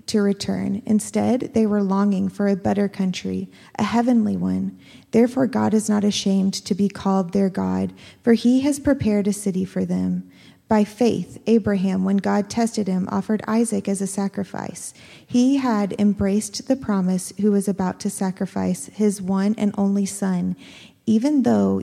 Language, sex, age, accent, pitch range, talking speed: English, female, 30-49, American, 185-215 Hz, 165 wpm